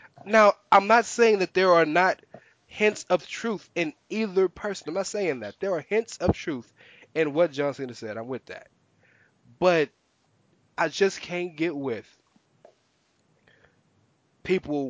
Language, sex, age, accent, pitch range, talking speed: English, male, 20-39, American, 135-200 Hz, 155 wpm